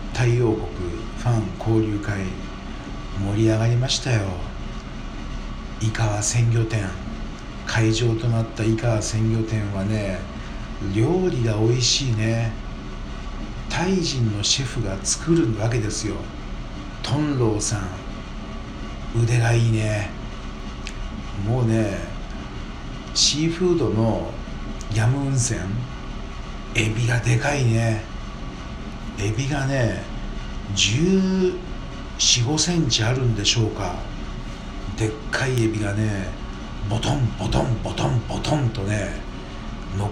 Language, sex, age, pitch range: Japanese, male, 60-79, 105-120 Hz